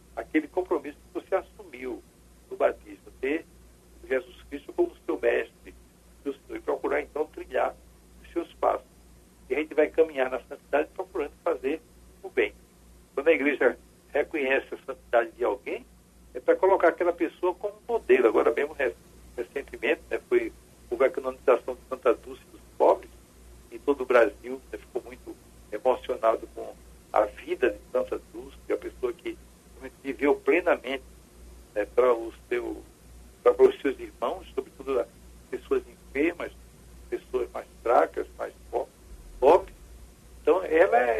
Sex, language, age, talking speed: male, Portuguese, 60-79, 145 wpm